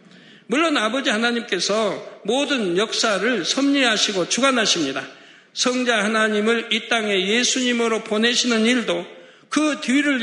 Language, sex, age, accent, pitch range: Korean, male, 60-79, native, 210-260 Hz